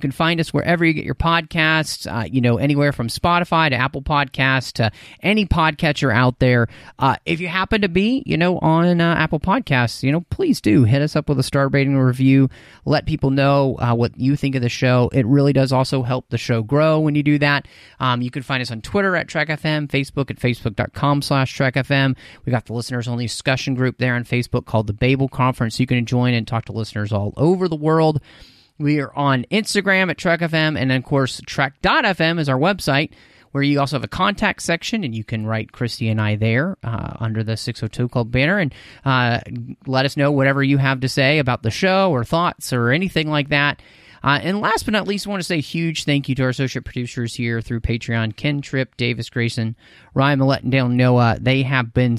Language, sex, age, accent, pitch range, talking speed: English, male, 30-49, American, 120-155 Hz, 220 wpm